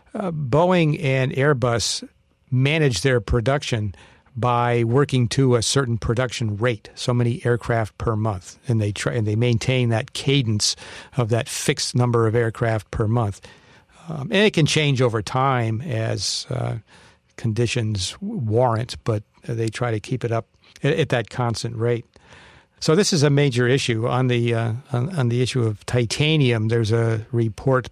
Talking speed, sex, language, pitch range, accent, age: 165 wpm, male, English, 115-130 Hz, American, 60-79